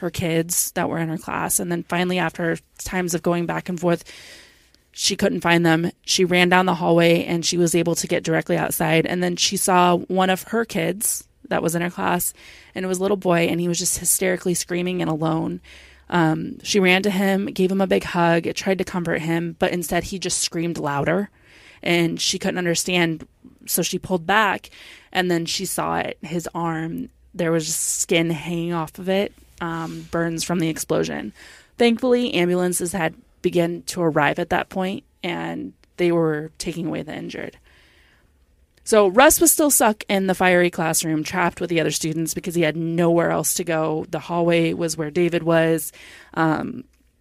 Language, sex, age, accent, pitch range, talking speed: English, female, 20-39, American, 165-185 Hz, 195 wpm